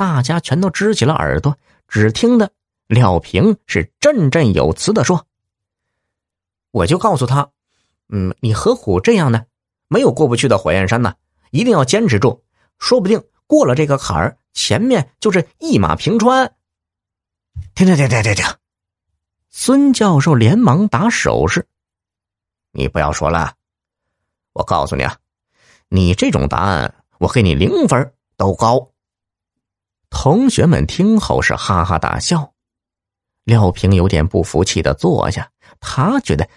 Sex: male